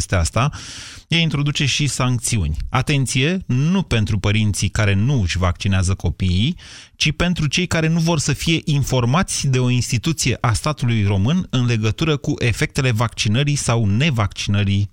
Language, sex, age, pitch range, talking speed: Romanian, male, 30-49, 100-130 Hz, 150 wpm